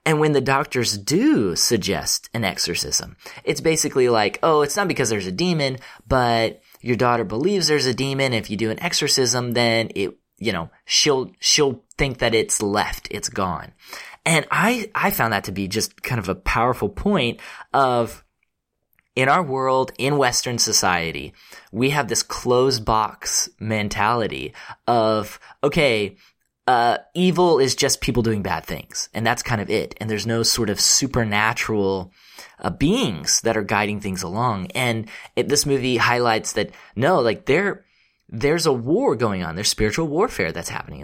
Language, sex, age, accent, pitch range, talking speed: English, male, 20-39, American, 105-135 Hz, 170 wpm